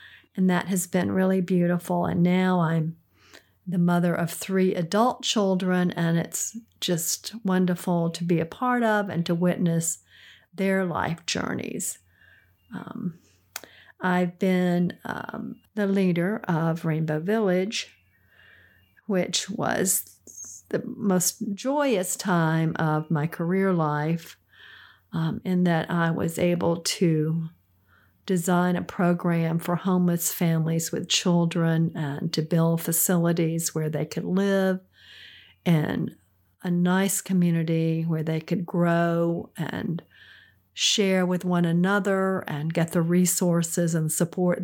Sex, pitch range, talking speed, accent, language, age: female, 165-190 Hz, 120 wpm, American, English, 50-69